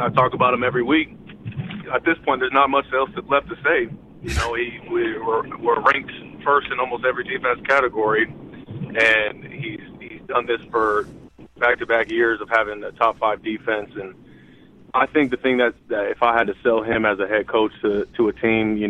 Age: 30-49